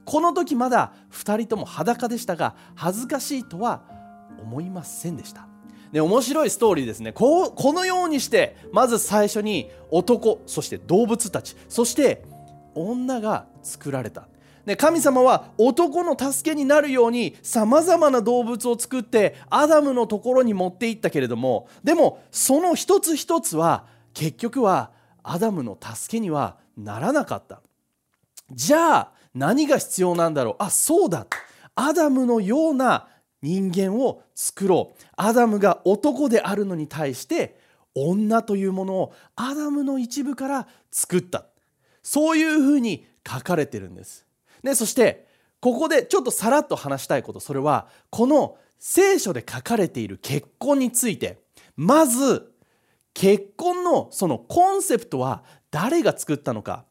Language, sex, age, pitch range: English, male, 30-49, 180-285 Hz